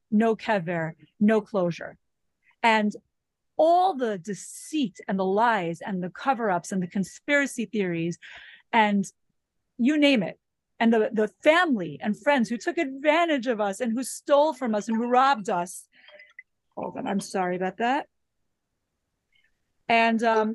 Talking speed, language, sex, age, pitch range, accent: 150 wpm, English, female, 30-49, 195-255 Hz, American